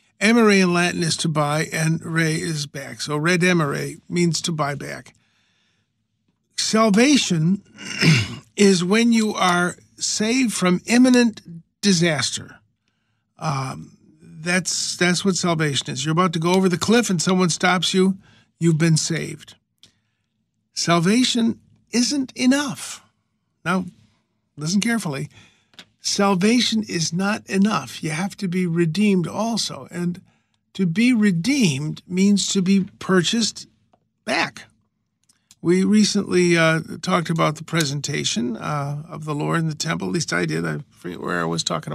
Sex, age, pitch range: male, 50-69, 155-200 Hz